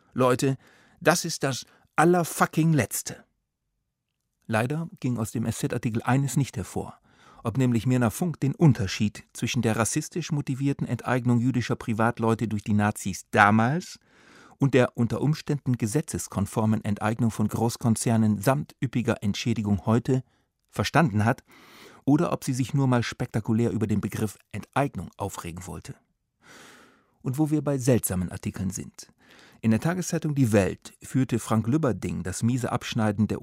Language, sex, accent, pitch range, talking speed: German, male, German, 105-135 Hz, 135 wpm